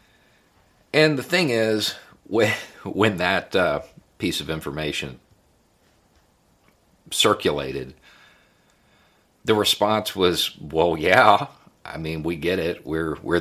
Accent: American